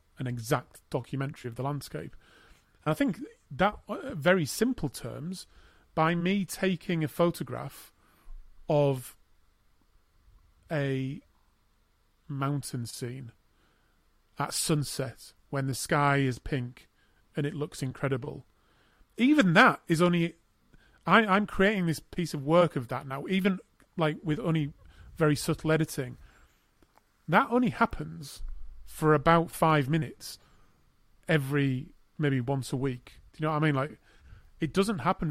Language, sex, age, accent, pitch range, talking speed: English, male, 30-49, British, 125-160 Hz, 130 wpm